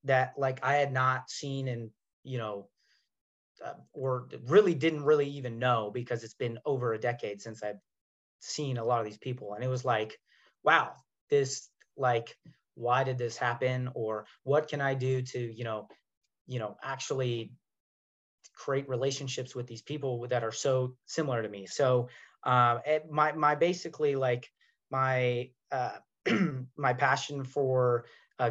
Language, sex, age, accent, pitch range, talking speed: English, male, 30-49, American, 120-145 Hz, 160 wpm